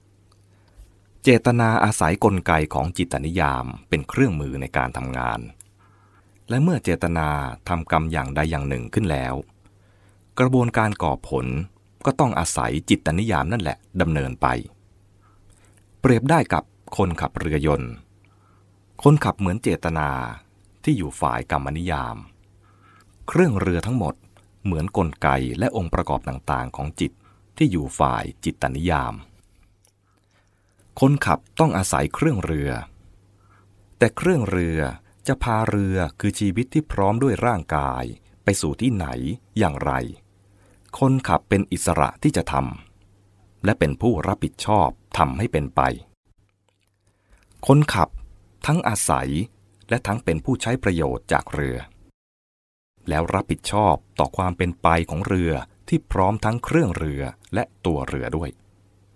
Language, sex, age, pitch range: English, male, 30-49, 80-100 Hz